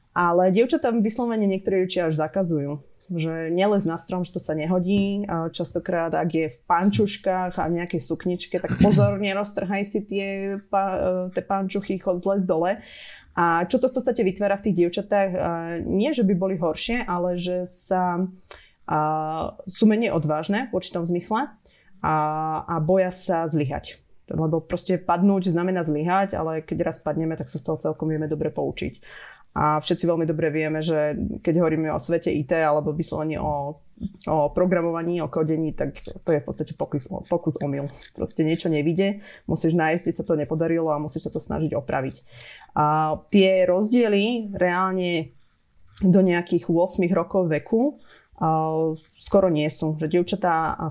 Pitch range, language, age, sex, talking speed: 155-190 Hz, Slovak, 20-39, female, 160 wpm